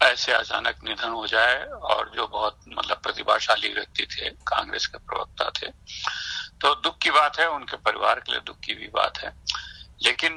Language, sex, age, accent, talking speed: Hindi, male, 50-69, native, 180 wpm